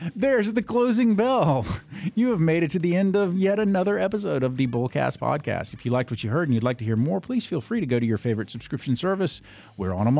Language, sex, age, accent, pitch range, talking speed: English, male, 50-69, American, 115-155 Hz, 260 wpm